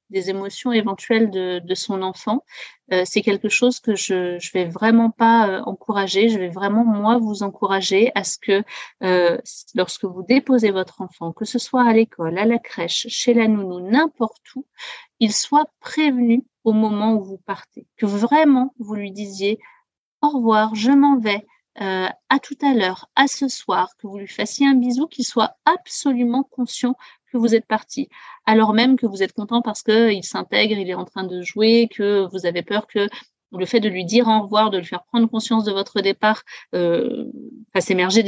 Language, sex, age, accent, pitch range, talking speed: French, female, 40-59, French, 200-250 Hz, 195 wpm